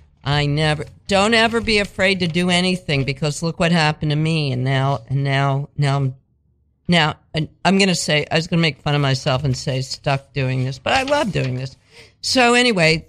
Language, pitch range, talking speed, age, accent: English, 130-165 Hz, 210 wpm, 50-69, American